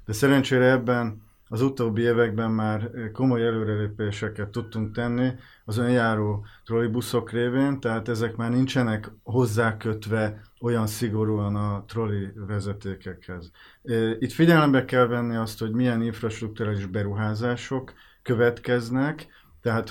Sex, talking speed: male, 110 wpm